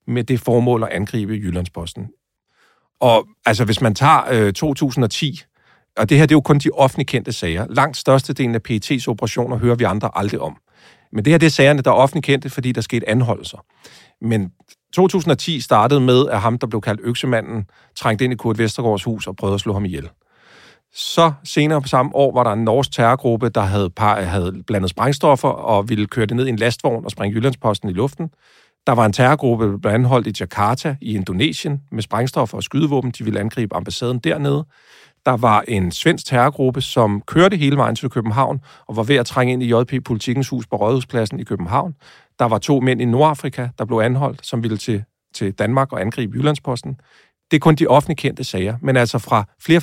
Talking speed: 205 wpm